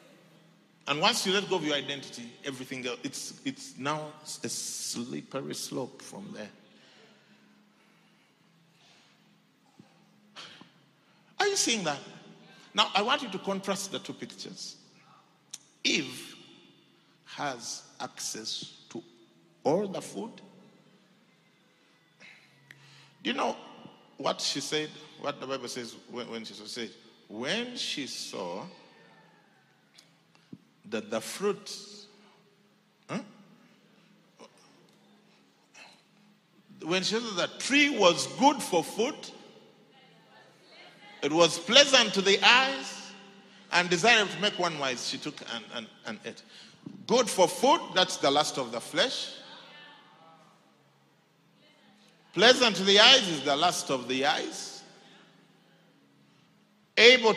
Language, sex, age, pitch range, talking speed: English, male, 50-69, 155-220 Hz, 115 wpm